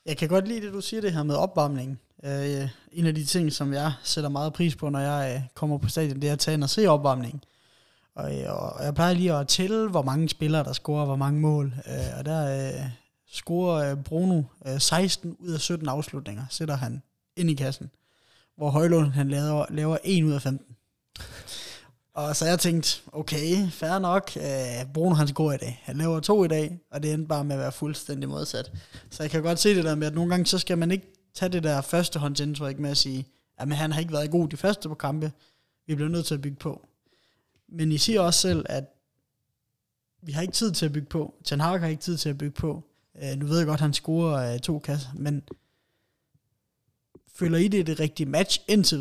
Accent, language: native, Danish